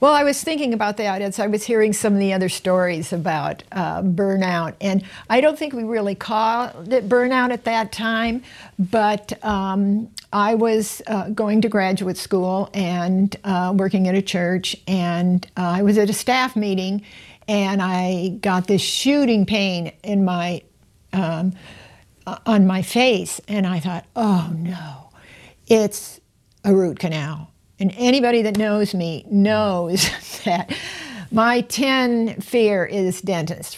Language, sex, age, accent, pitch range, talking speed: English, female, 60-79, American, 175-210 Hz, 155 wpm